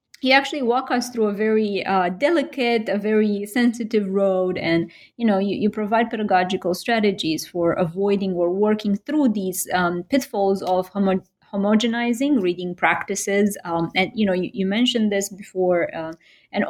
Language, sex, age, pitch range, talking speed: English, female, 30-49, 180-215 Hz, 160 wpm